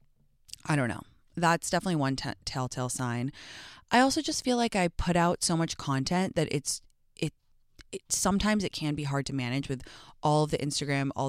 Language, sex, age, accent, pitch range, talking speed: English, female, 20-39, American, 130-165 Hz, 195 wpm